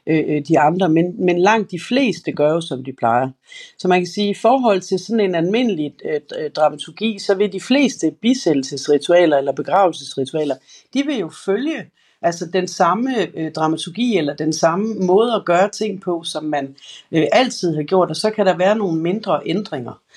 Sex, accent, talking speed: female, native, 180 wpm